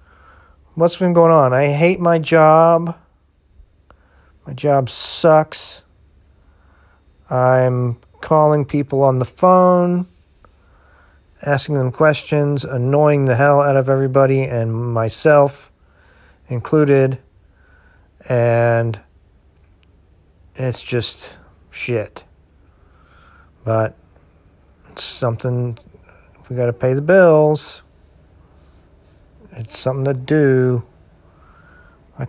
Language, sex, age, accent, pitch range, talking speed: English, male, 40-59, American, 80-130 Hz, 85 wpm